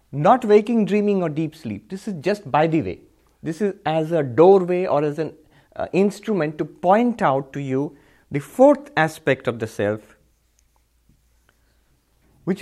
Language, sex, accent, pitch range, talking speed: English, male, Indian, 145-205 Hz, 160 wpm